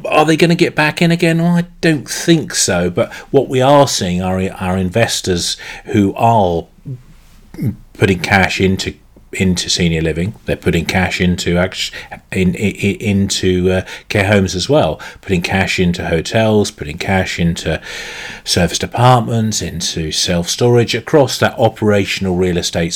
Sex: male